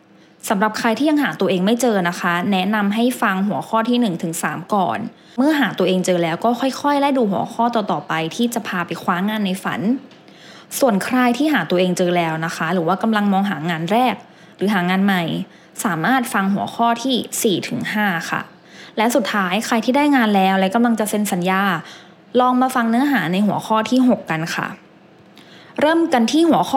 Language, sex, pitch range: English, female, 185-250 Hz